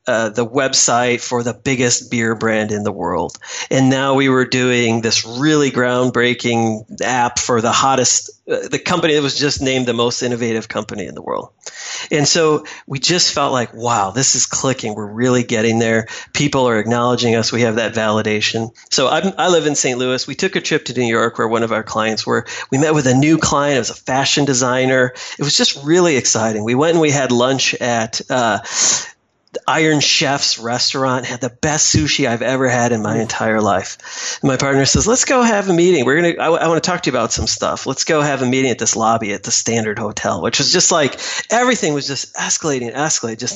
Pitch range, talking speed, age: 115-150 Hz, 225 wpm, 40-59